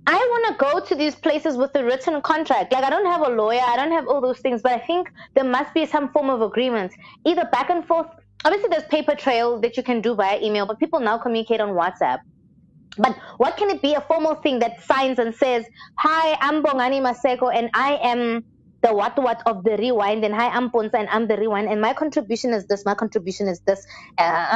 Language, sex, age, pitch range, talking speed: English, female, 20-39, 225-305 Hz, 235 wpm